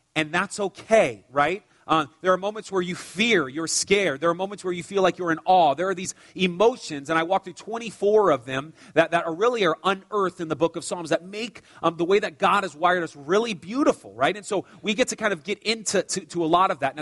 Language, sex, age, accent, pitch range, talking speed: English, male, 30-49, American, 150-195 Hz, 260 wpm